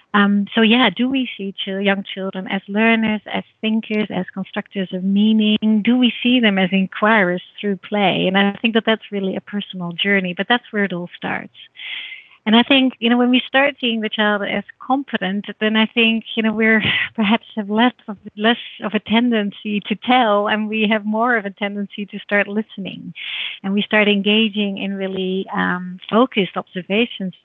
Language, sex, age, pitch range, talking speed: English, female, 30-49, 195-225 Hz, 190 wpm